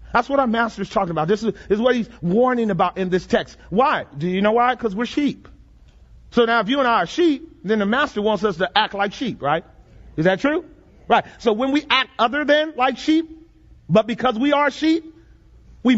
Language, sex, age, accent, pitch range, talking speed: English, male, 40-59, American, 180-265 Hz, 230 wpm